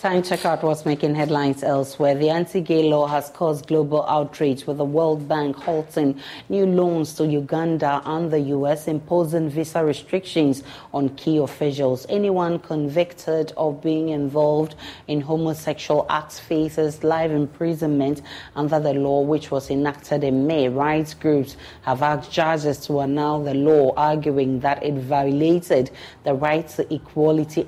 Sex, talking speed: female, 150 wpm